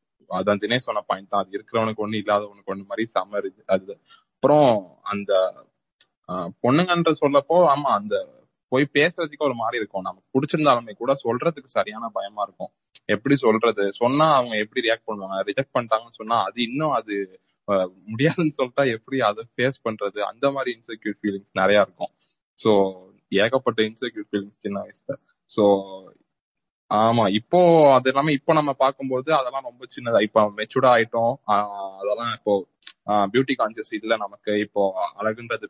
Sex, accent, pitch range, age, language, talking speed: male, native, 100-130 Hz, 20-39, Tamil, 100 wpm